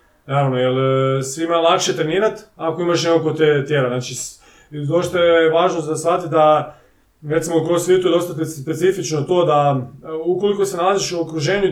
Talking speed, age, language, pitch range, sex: 150 wpm, 30-49, Croatian, 140-170 Hz, male